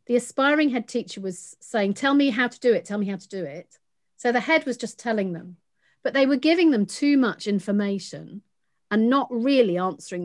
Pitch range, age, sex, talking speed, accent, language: 190-250 Hz, 40-59, female, 215 wpm, British, English